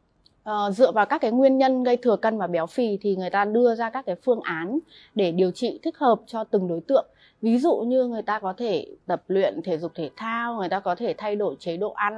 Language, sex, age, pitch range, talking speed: Vietnamese, female, 20-39, 180-240 Hz, 260 wpm